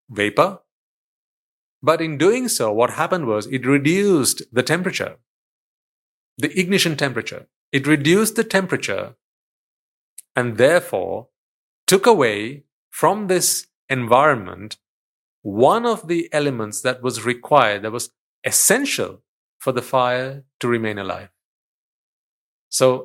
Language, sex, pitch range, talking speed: English, male, 125-165 Hz, 110 wpm